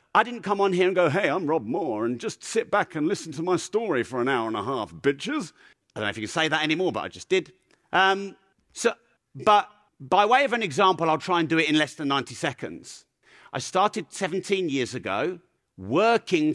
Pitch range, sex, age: 145-200 Hz, male, 40-59